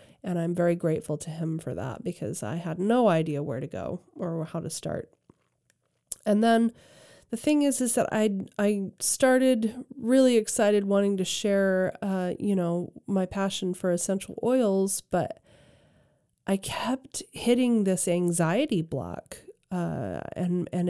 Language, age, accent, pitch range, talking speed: English, 30-49, American, 165-210 Hz, 150 wpm